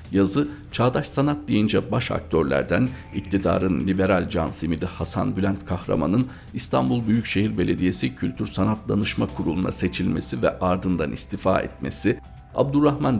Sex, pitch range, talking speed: male, 85-105 Hz, 120 wpm